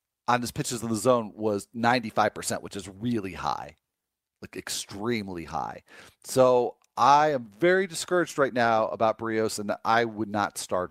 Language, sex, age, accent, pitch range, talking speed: English, male, 40-59, American, 105-130 Hz, 160 wpm